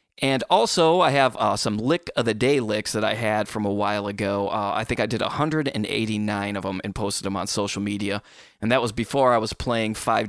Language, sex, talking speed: English, male, 235 wpm